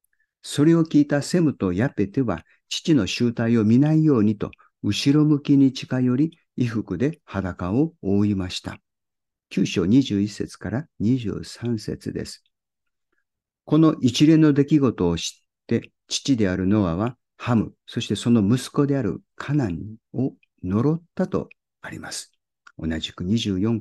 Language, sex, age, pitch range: Japanese, male, 50-69, 100-140 Hz